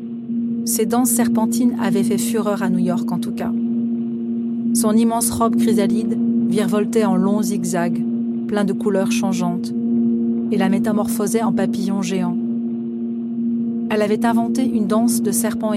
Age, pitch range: 40-59, 210-235 Hz